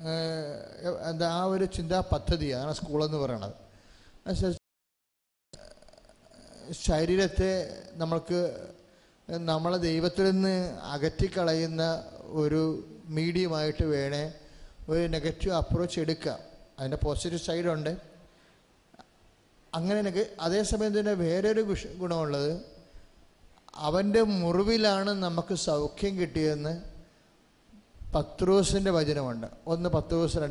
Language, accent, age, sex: English, Indian, 30-49, male